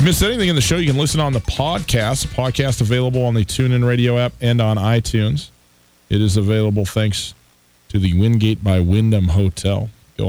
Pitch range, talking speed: 80-110 Hz, 185 wpm